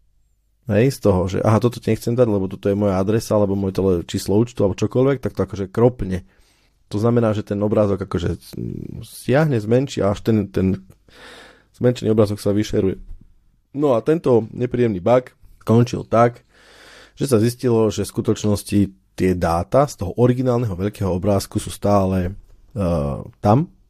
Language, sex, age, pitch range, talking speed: Slovak, male, 30-49, 95-115 Hz, 165 wpm